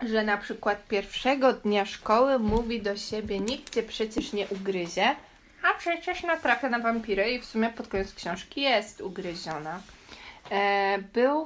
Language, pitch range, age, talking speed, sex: Polish, 195-235 Hz, 20-39, 145 wpm, female